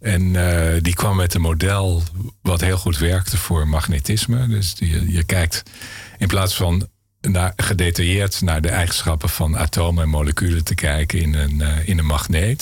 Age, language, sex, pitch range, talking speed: 50-69, Dutch, male, 80-100 Hz, 165 wpm